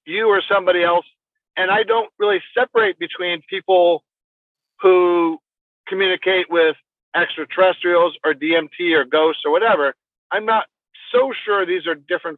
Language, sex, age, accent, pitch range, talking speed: English, male, 50-69, American, 160-220 Hz, 135 wpm